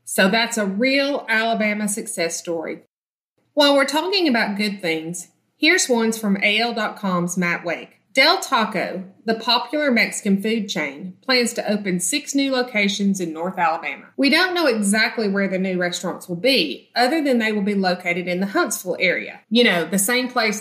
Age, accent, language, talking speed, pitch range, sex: 30-49, American, English, 175 wpm, 190-245 Hz, female